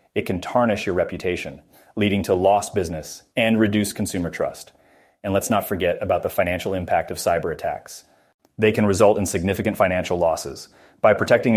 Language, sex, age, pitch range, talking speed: English, male, 30-49, 95-110 Hz, 170 wpm